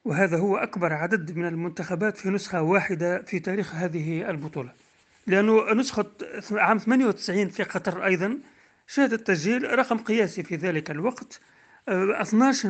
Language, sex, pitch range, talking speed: Arabic, male, 175-215 Hz, 130 wpm